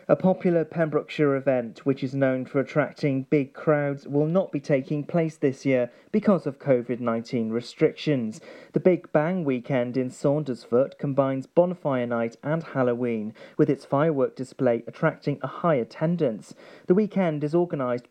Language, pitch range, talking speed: English, 125-160 Hz, 150 wpm